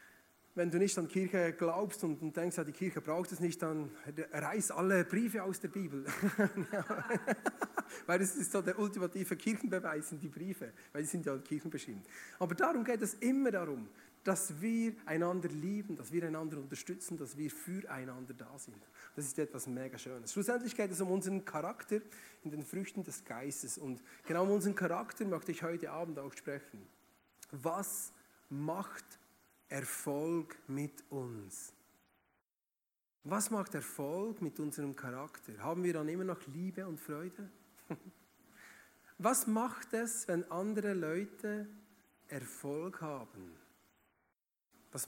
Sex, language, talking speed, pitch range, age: male, German, 150 wpm, 150-200 Hz, 40-59